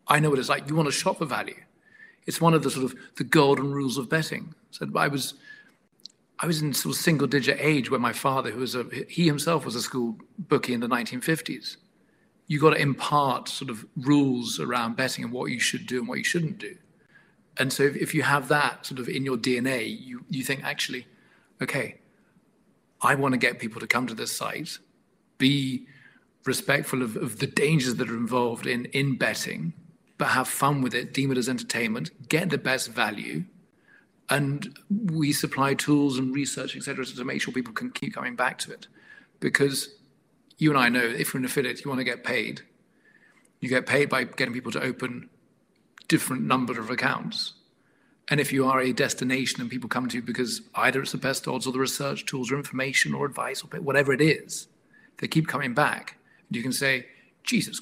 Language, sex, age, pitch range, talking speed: English, male, 40-59, 130-155 Hz, 205 wpm